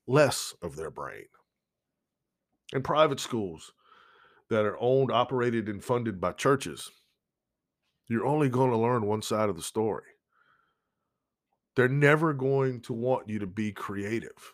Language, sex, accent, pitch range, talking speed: English, male, American, 100-125 Hz, 140 wpm